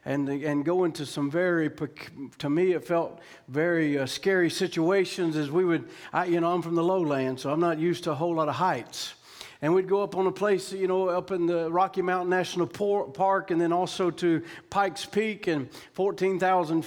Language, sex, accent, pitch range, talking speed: English, male, American, 165-190 Hz, 210 wpm